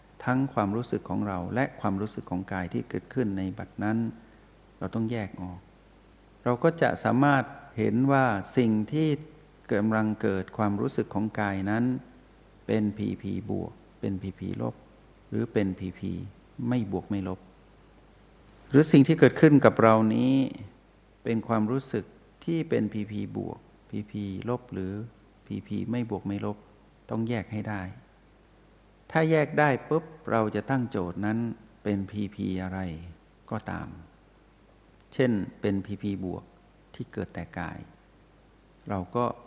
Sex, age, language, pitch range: male, 60-79, Thai, 100-120 Hz